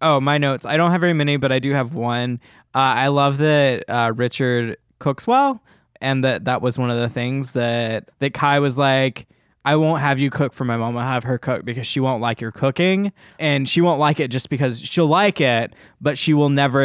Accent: American